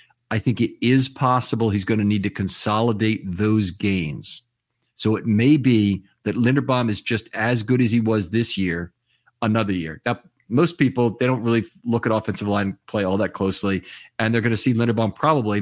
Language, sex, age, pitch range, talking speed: English, male, 40-59, 100-120 Hz, 195 wpm